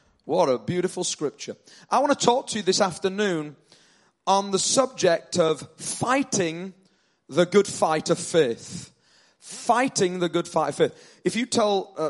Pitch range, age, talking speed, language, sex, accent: 160-200 Hz, 30-49, 160 wpm, English, male, British